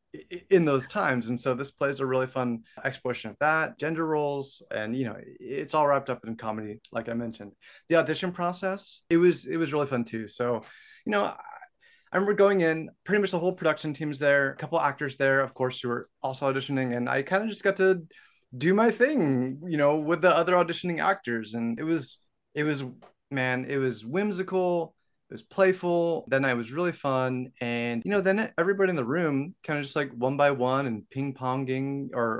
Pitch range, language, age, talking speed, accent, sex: 125-165 Hz, English, 30-49, 215 wpm, American, male